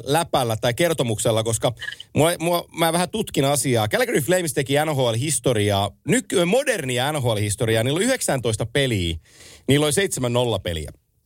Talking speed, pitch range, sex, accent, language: 135 wpm, 115-165 Hz, male, native, Finnish